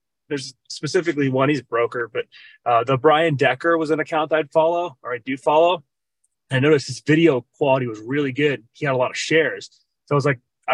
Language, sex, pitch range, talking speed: English, male, 130-155 Hz, 220 wpm